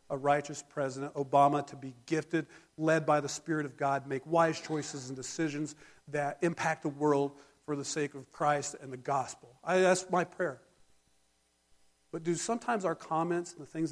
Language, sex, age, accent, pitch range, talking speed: English, male, 40-59, American, 130-165 Hz, 180 wpm